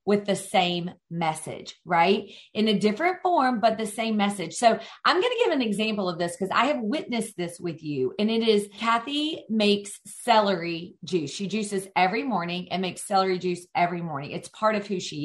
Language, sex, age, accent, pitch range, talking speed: English, female, 40-59, American, 190-245 Hz, 200 wpm